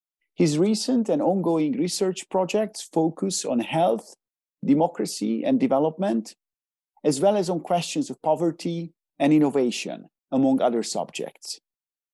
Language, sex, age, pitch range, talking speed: English, male, 50-69, 155-215 Hz, 120 wpm